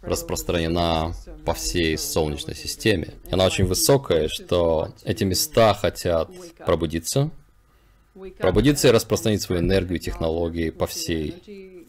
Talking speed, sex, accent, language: 110 wpm, male, native, Russian